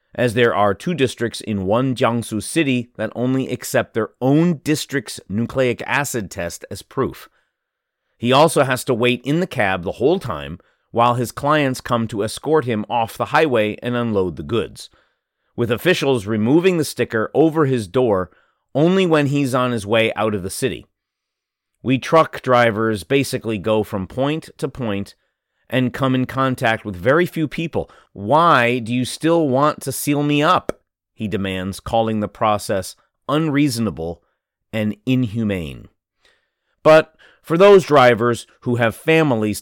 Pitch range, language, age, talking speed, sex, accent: 105-145 Hz, English, 30-49, 160 wpm, male, American